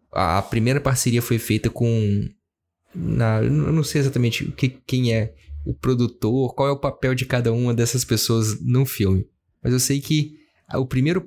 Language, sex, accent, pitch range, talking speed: Portuguese, male, Brazilian, 115-135 Hz, 185 wpm